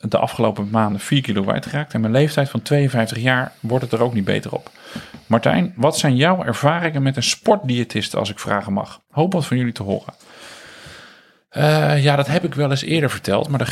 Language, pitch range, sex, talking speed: Dutch, 110-140 Hz, male, 215 wpm